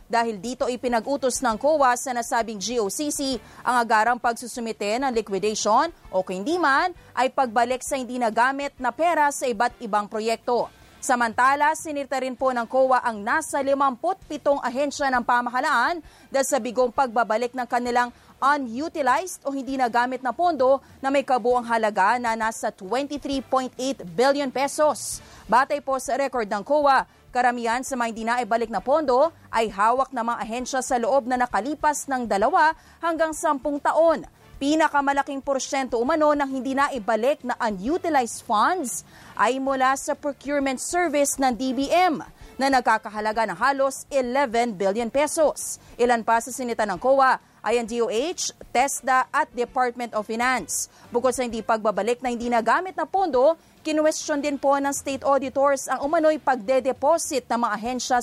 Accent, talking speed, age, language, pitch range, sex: Filipino, 150 wpm, 30-49, English, 240-285 Hz, female